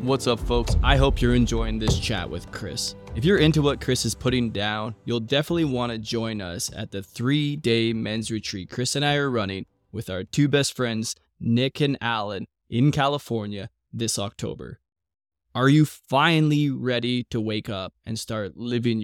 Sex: male